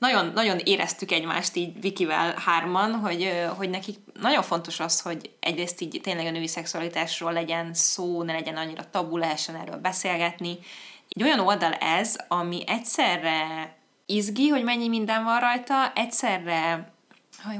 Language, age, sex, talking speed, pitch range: Hungarian, 20-39, female, 145 wpm, 165-195 Hz